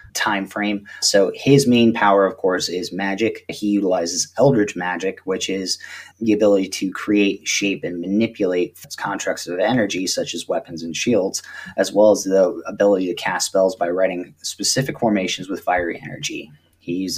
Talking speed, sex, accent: 170 wpm, male, American